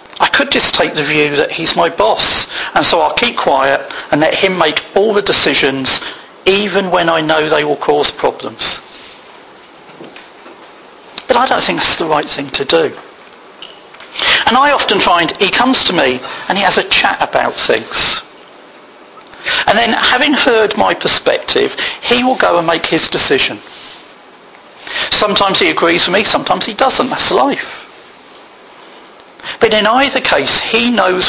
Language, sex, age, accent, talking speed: English, male, 40-59, British, 160 wpm